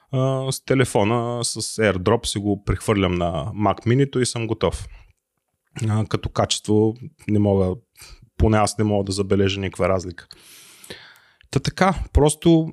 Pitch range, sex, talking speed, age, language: 100-125 Hz, male, 130 wpm, 30-49, Bulgarian